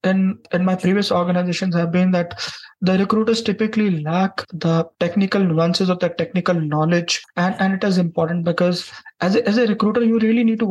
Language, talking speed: English, 190 wpm